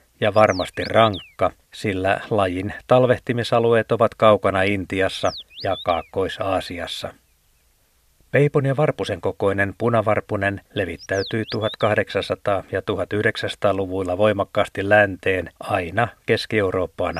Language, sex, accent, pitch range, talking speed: Finnish, male, native, 95-120 Hz, 85 wpm